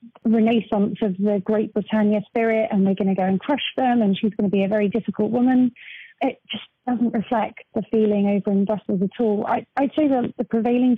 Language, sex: English, female